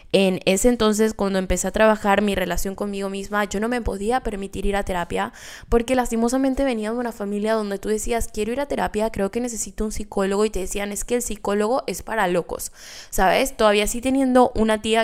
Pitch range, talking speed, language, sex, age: 195-225 Hz, 210 wpm, Spanish, female, 10-29